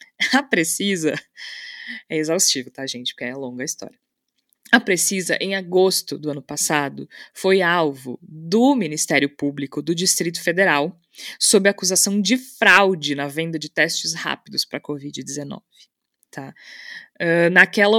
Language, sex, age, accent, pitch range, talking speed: Portuguese, female, 20-39, Brazilian, 155-200 Hz, 135 wpm